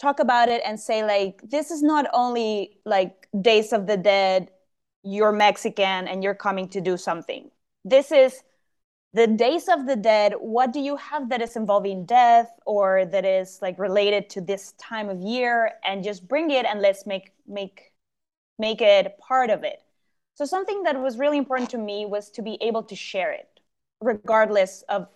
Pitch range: 195-245 Hz